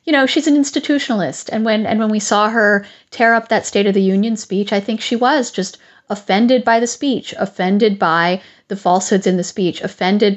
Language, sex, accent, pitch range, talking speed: English, female, American, 185-230 Hz, 215 wpm